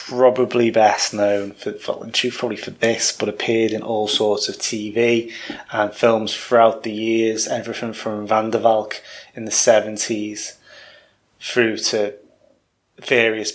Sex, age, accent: male, 20-39, British